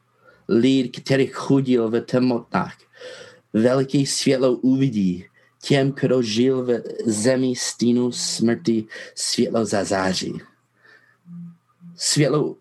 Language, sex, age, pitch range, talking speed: Czech, male, 30-49, 115-140 Hz, 90 wpm